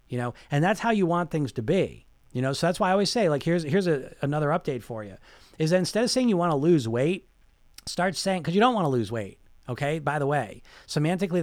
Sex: male